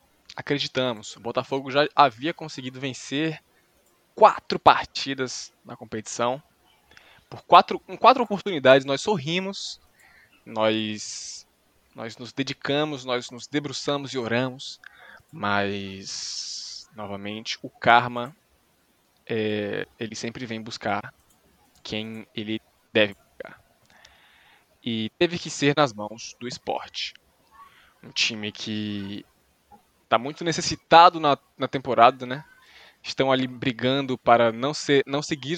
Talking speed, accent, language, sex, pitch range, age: 105 wpm, Brazilian, Portuguese, male, 115-145 Hz, 20-39